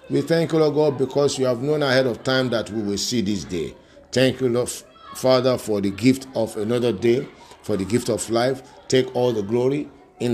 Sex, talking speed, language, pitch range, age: male, 220 wpm, English, 110-130 Hz, 50-69